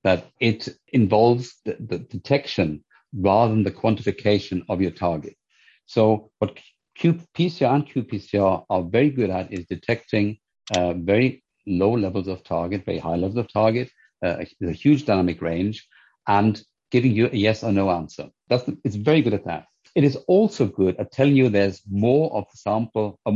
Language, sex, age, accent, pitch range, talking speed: English, male, 50-69, German, 95-125 Hz, 175 wpm